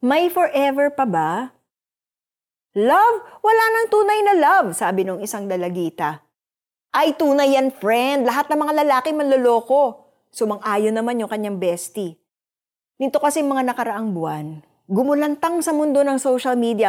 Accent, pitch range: native, 205-280 Hz